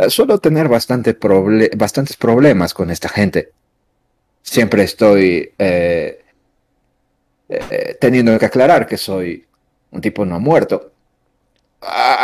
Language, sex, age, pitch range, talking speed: Spanish, male, 40-59, 95-130 Hz, 115 wpm